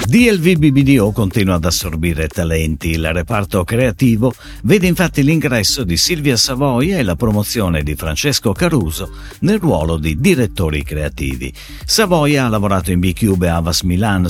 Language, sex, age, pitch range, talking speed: Italian, male, 50-69, 85-140 Hz, 145 wpm